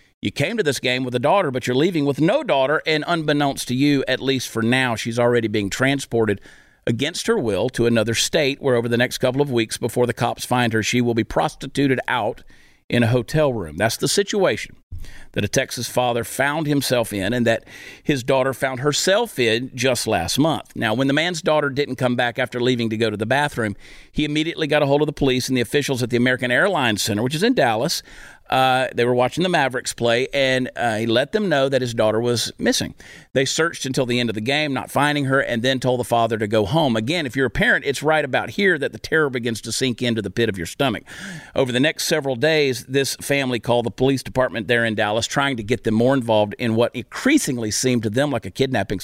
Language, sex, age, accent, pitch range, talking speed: English, male, 50-69, American, 115-140 Hz, 240 wpm